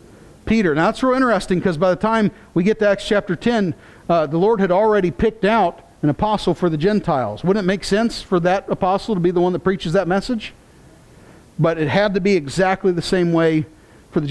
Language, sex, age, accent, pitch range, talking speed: English, male, 40-59, American, 155-200 Hz, 220 wpm